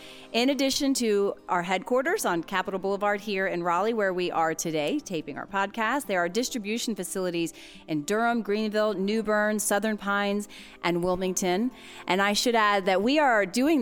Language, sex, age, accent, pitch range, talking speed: English, female, 30-49, American, 165-210 Hz, 170 wpm